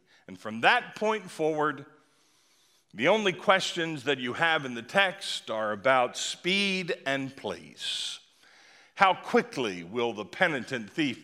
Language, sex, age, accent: English, male, 50-69, American